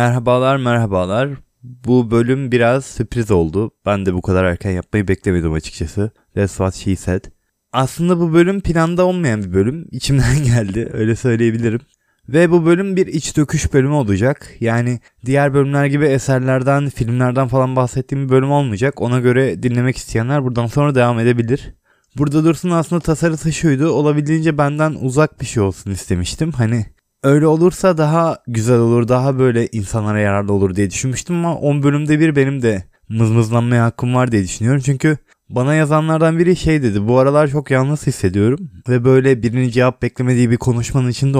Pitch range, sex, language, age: 115-145 Hz, male, Turkish, 20-39